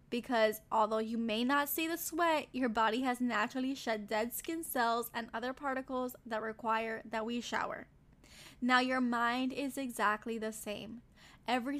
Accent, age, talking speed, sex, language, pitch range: American, 10-29, 165 wpm, female, English, 220-270 Hz